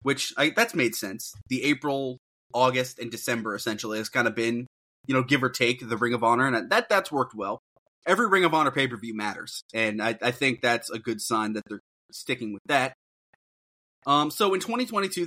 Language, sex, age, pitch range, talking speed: English, male, 20-39, 115-145 Hz, 210 wpm